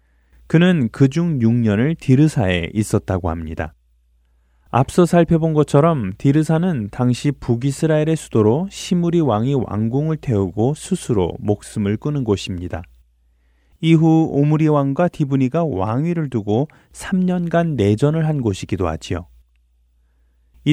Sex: male